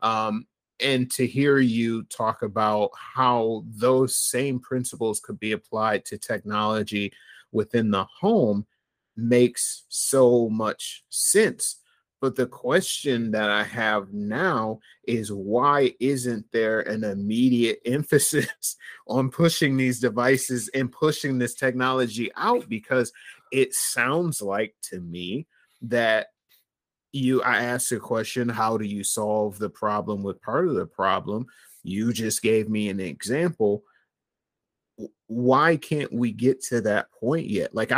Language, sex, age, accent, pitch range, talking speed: English, male, 30-49, American, 105-130 Hz, 135 wpm